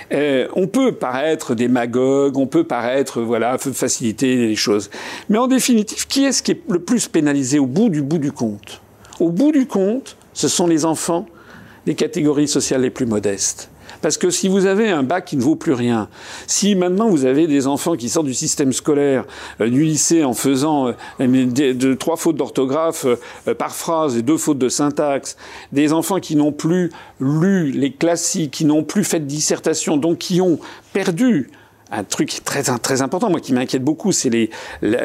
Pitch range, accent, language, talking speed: 130-190 Hz, French, French, 185 wpm